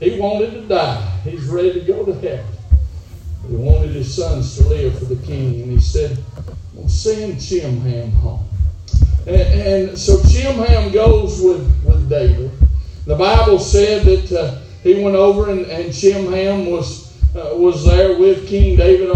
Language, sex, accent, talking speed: English, male, American, 165 wpm